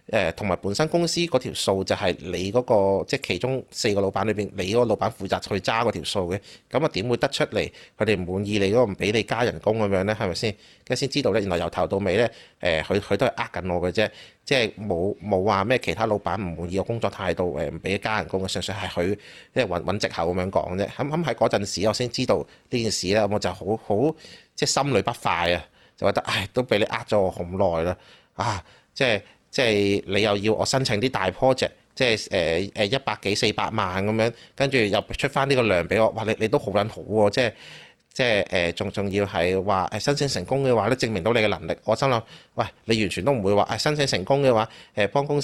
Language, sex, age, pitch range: Chinese, male, 30-49, 95-125 Hz